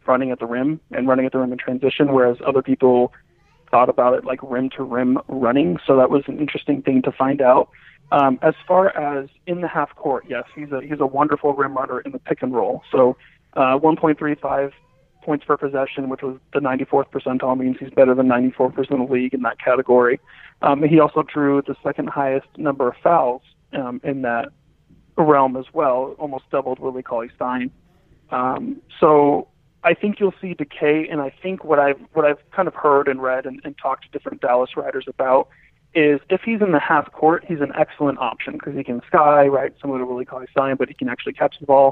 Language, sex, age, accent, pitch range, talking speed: English, male, 30-49, American, 130-150 Hz, 215 wpm